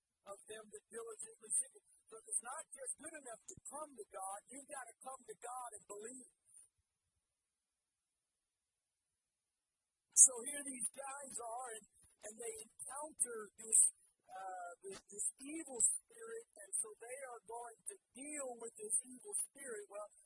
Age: 50-69